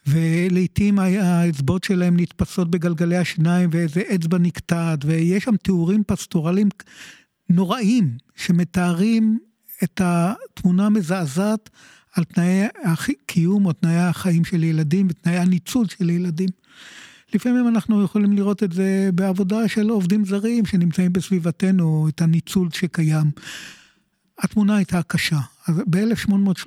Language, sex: Hebrew, male